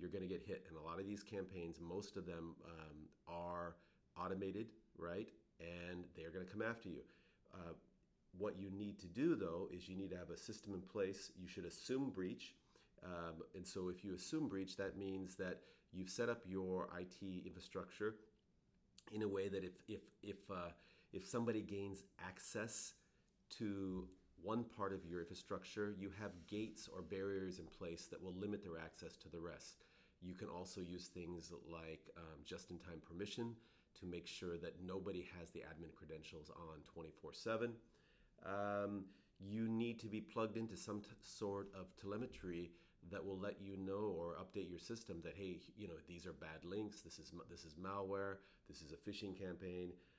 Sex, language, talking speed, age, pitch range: male, English, 185 wpm, 40-59, 85-100 Hz